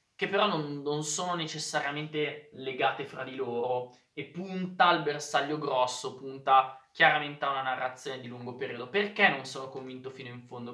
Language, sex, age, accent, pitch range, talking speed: Italian, male, 20-39, native, 130-170 Hz, 170 wpm